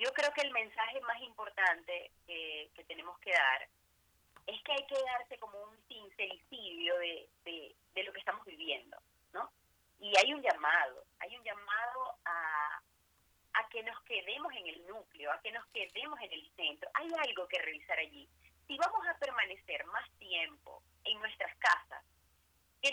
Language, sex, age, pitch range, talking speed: Spanish, female, 30-49, 190-280 Hz, 165 wpm